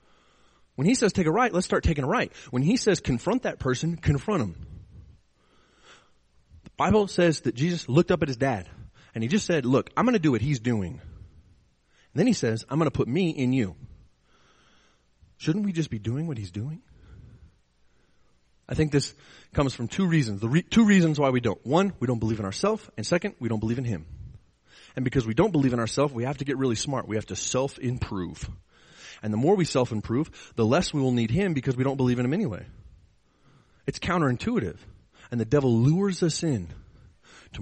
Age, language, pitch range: 30-49, English, 100-145 Hz